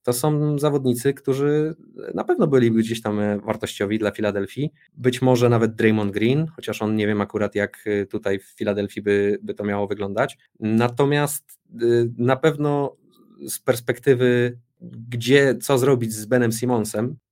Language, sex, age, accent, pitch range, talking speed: Polish, male, 20-39, native, 100-120 Hz, 145 wpm